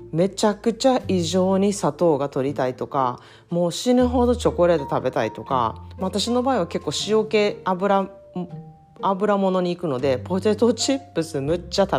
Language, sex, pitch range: Japanese, female, 150-210 Hz